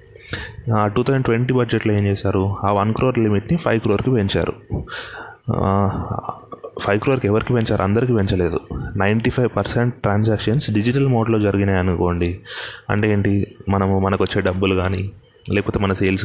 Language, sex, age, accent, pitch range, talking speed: Telugu, male, 30-49, native, 95-115 Hz, 140 wpm